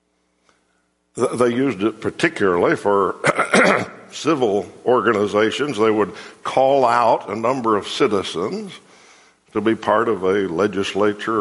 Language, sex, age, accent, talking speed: English, male, 60-79, American, 110 wpm